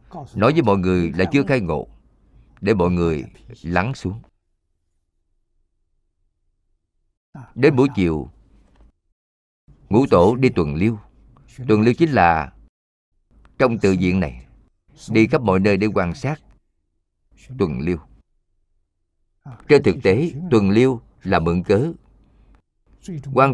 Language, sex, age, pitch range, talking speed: Vietnamese, male, 50-69, 85-125 Hz, 120 wpm